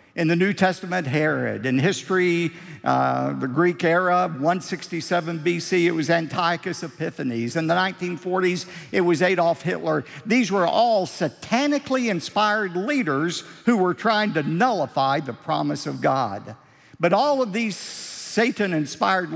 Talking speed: 135 wpm